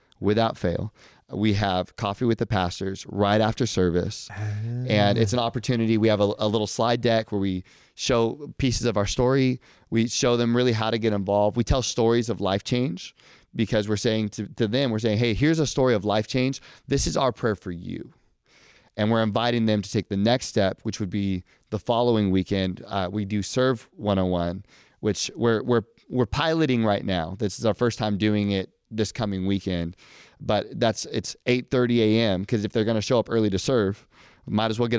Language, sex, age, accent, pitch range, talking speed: English, male, 30-49, American, 100-120 Hz, 205 wpm